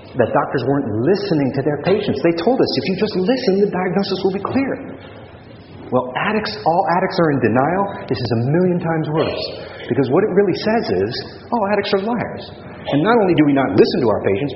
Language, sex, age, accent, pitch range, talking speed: English, male, 40-59, American, 125-195 Hz, 215 wpm